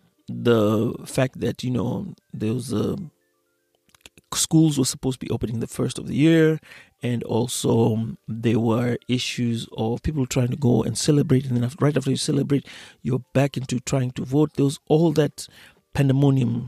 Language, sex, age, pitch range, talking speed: Swahili, male, 30-49, 120-155 Hz, 160 wpm